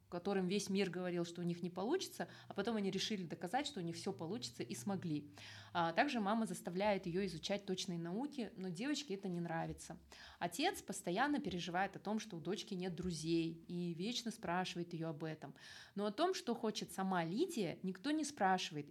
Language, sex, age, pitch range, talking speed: Russian, female, 20-39, 175-215 Hz, 190 wpm